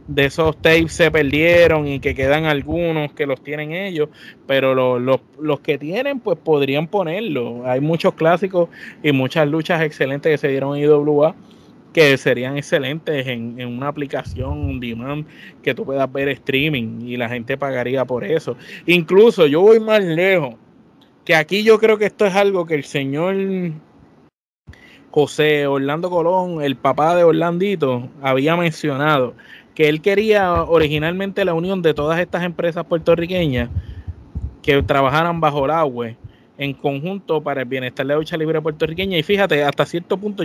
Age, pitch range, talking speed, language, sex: 20-39, 140-180 Hz, 160 wpm, Spanish, male